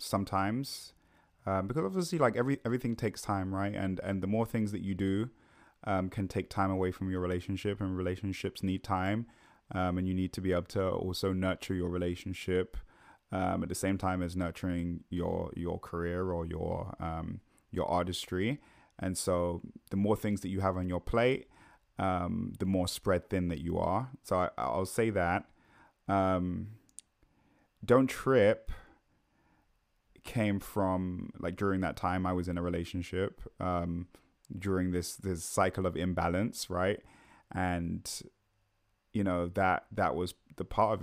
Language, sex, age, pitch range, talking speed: English, male, 20-39, 90-100 Hz, 160 wpm